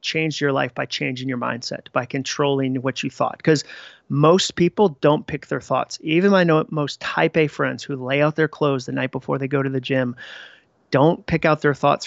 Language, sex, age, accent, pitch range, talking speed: English, male, 30-49, American, 140-155 Hz, 220 wpm